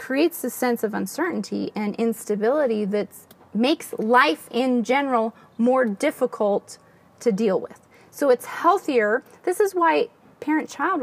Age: 30-49